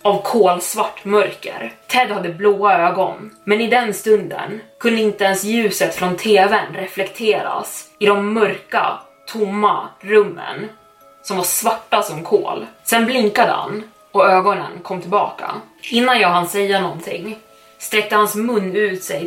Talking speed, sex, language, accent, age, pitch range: 140 wpm, female, Swedish, native, 20-39, 180-210 Hz